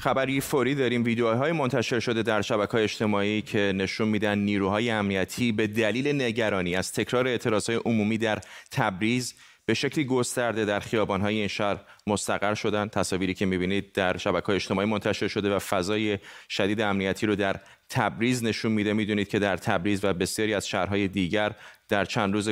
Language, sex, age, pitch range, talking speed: Persian, male, 30-49, 100-125 Hz, 170 wpm